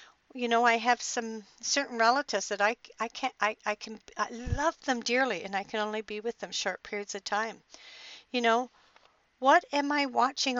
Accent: American